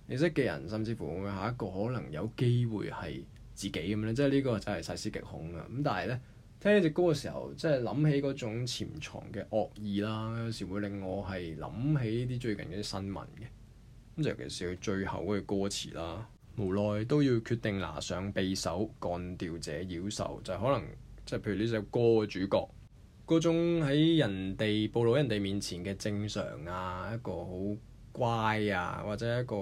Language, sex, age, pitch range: Chinese, male, 20-39, 100-125 Hz